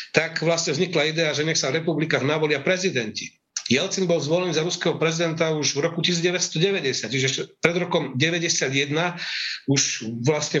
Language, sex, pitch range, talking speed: Slovak, male, 140-180 Hz, 155 wpm